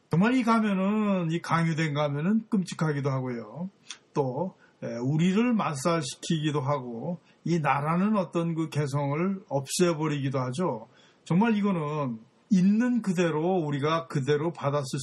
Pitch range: 145-190 Hz